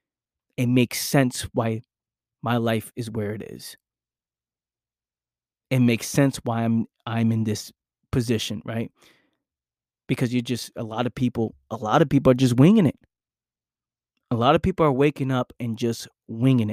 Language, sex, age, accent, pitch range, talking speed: English, male, 20-39, American, 120-140 Hz, 160 wpm